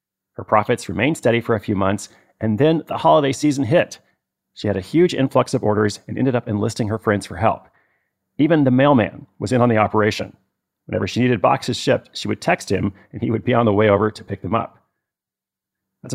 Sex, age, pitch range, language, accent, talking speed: male, 30-49, 110-140 Hz, English, American, 220 wpm